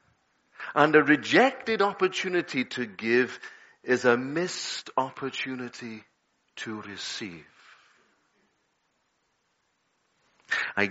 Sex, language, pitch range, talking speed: male, English, 115-140 Hz, 70 wpm